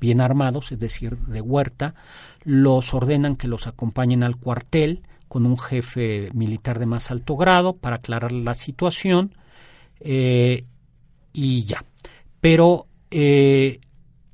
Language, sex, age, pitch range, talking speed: Spanish, male, 40-59, 120-145 Hz, 125 wpm